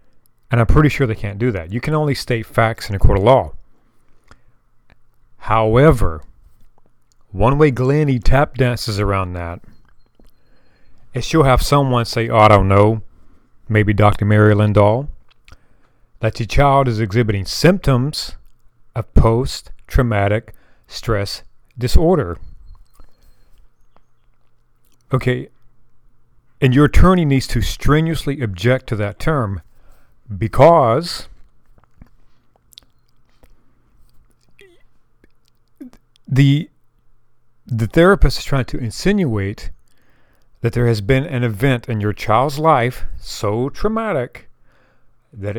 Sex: male